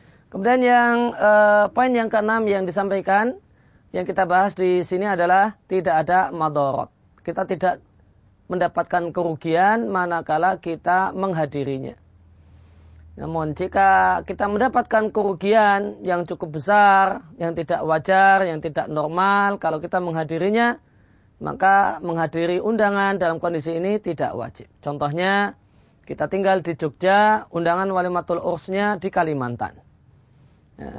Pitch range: 160-200 Hz